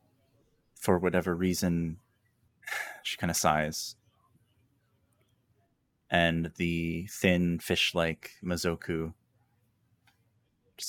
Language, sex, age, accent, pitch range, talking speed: English, male, 20-39, American, 85-115 Hz, 70 wpm